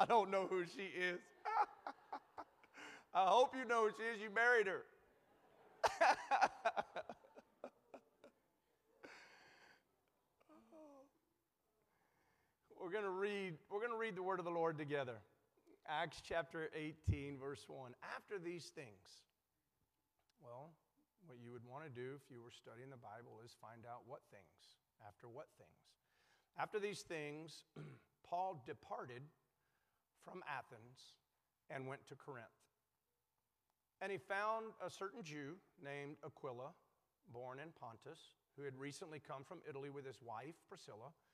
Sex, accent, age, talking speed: male, American, 40-59, 130 wpm